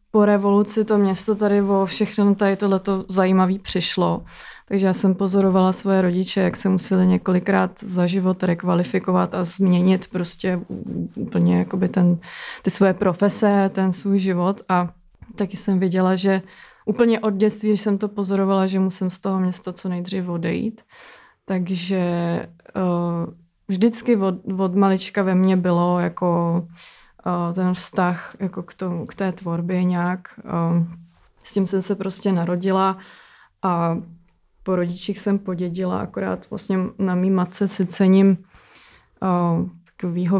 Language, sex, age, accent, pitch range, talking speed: Czech, female, 20-39, native, 180-195 Hz, 140 wpm